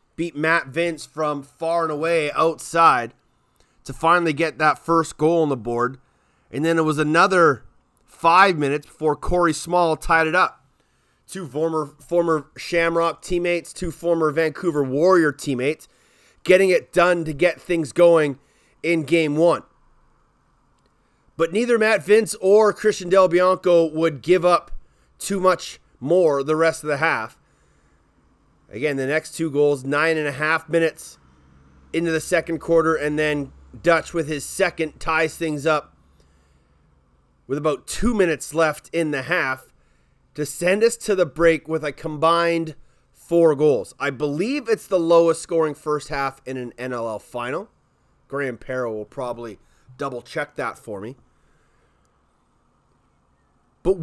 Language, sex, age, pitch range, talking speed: English, male, 30-49, 140-170 Hz, 150 wpm